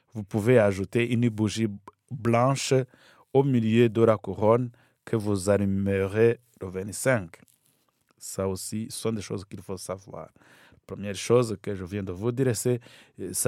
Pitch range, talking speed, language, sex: 100-125 Hz, 155 wpm, French, male